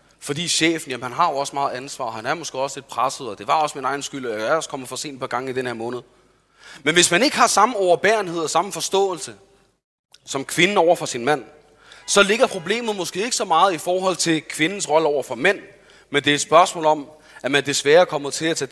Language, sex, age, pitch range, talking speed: Danish, male, 30-49, 130-175 Hz, 260 wpm